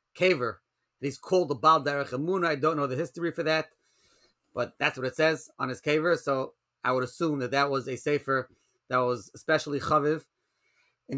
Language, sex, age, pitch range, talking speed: English, male, 30-49, 140-170 Hz, 190 wpm